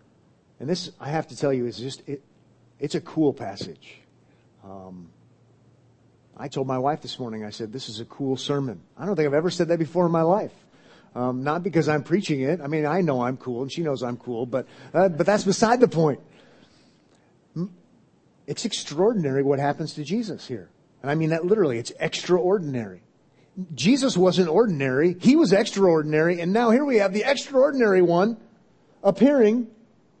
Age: 40-59